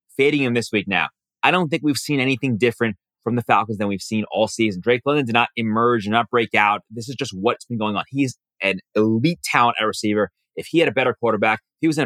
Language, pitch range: English, 110-135 Hz